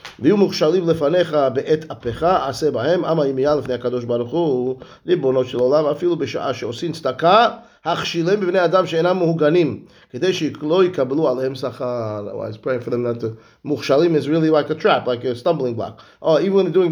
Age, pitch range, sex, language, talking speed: 30-49, 130-170 Hz, male, English, 70 wpm